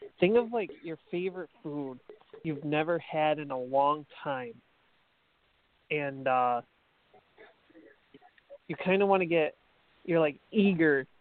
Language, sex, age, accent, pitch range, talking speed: English, male, 30-49, American, 145-175 Hz, 130 wpm